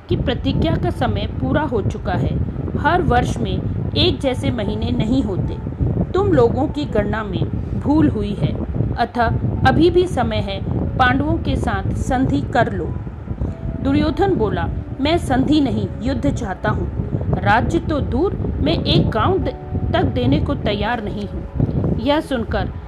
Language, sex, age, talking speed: Hindi, female, 40-59, 150 wpm